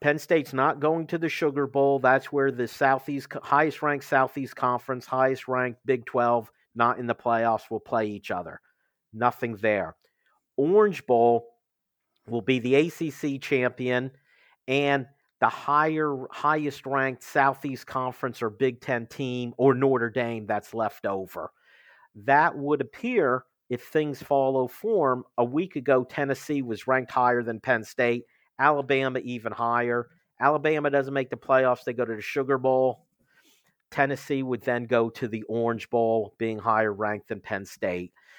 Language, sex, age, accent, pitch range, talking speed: English, male, 50-69, American, 115-140 Hz, 150 wpm